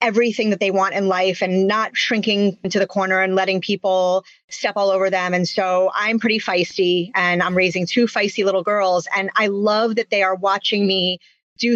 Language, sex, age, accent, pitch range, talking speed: English, female, 30-49, American, 185-225 Hz, 205 wpm